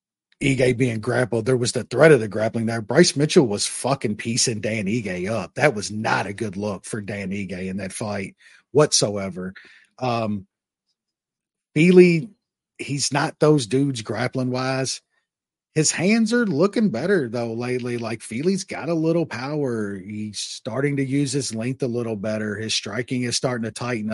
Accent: American